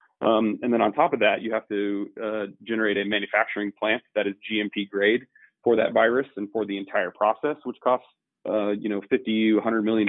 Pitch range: 105-120 Hz